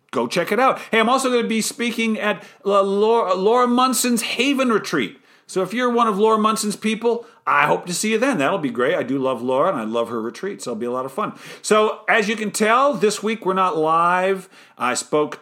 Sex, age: male, 50-69